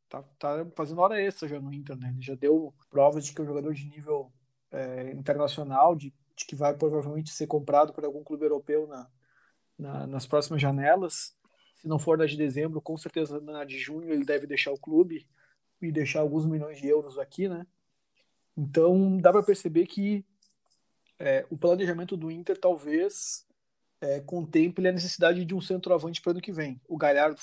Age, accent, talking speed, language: 20-39, Brazilian, 190 wpm, Portuguese